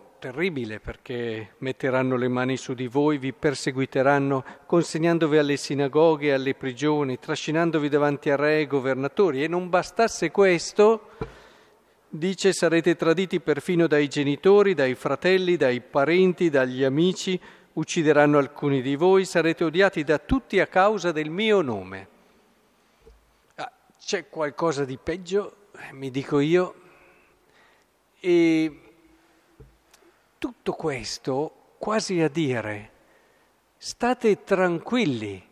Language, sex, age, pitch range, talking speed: Italian, male, 50-69, 135-195 Hz, 110 wpm